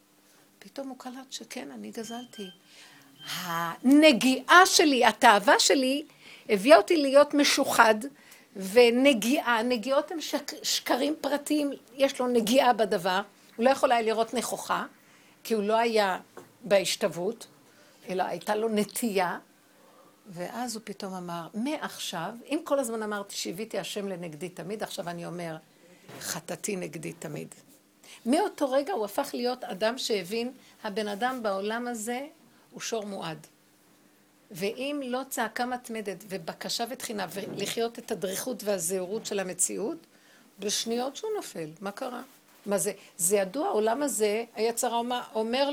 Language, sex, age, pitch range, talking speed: Hebrew, female, 60-79, 200-265 Hz, 125 wpm